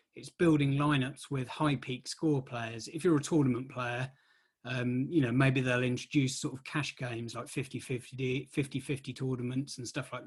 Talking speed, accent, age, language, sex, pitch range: 185 wpm, British, 30-49, English, male, 130-150 Hz